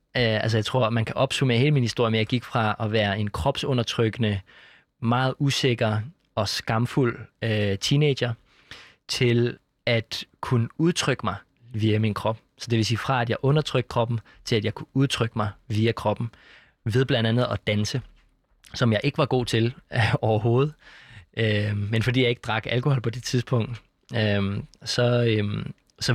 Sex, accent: male, native